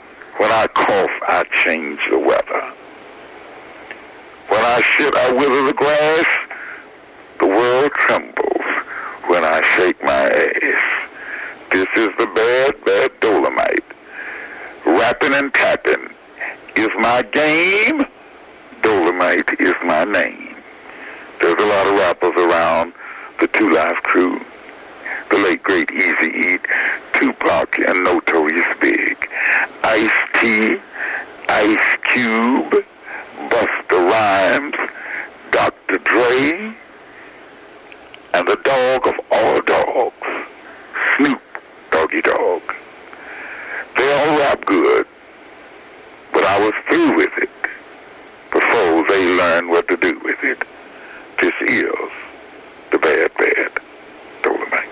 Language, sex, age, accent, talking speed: English, male, 60-79, American, 105 wpm